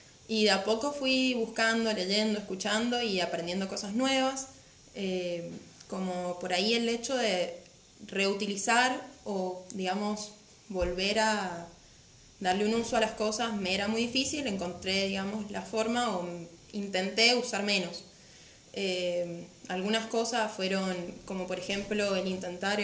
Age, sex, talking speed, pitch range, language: 20-39, female, 135 wpm, 185-220 Hz, Spanish